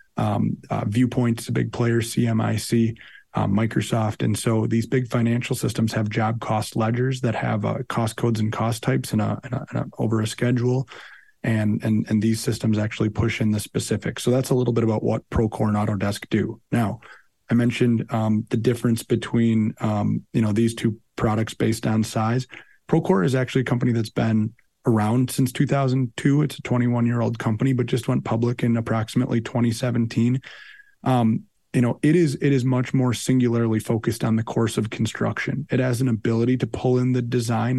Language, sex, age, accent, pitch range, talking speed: English, male, 30-49, American, 110-125 Hz, 185 wpm